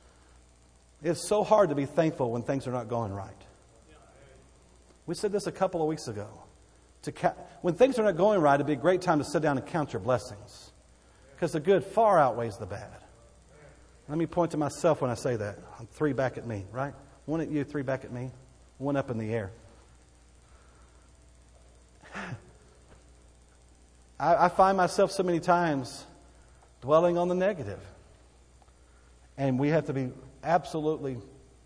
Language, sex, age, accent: English, male, 50-69, American